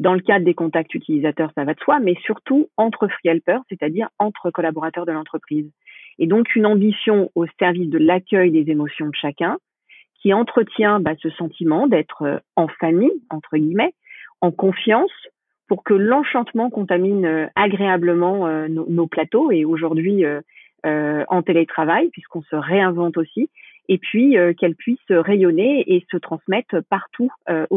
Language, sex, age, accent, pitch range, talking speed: French, female, 40-59, French, 165-210 Hz, 160 wpm